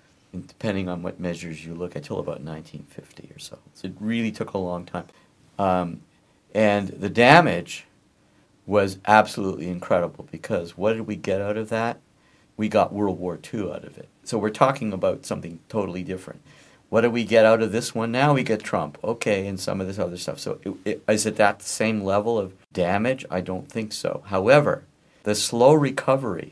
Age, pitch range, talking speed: 50-69, 90-110 Hz, 195 wpm